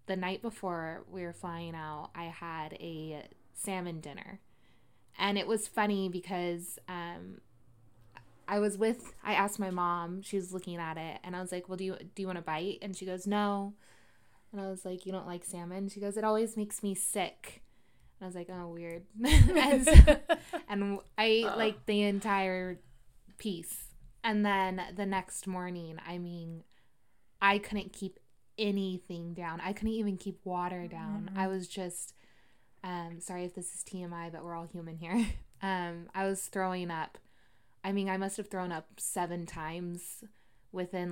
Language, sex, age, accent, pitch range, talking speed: English, female, 20-39, American, 170-195 Hz, 180 wpm